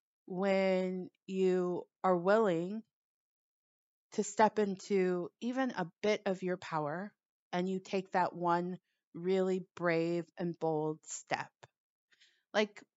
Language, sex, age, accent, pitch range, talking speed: English, female, 30-49, American, 175-215 Hz, 110 wpm